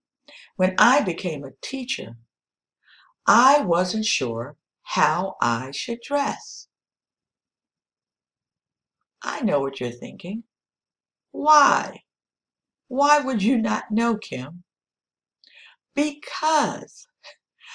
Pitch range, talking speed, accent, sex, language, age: 160-260 Hz, 85 wpm, American, female, English, 60-79